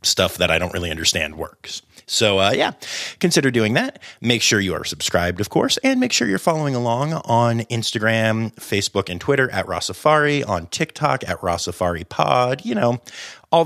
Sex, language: male, English